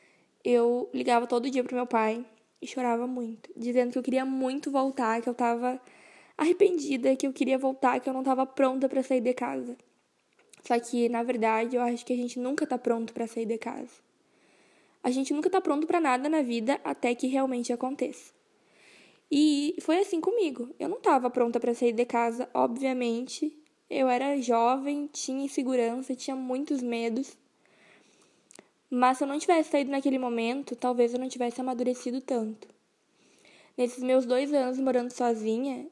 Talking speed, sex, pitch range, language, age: 170 wpm, female, 245-285 Hz, Portuguese, 10-29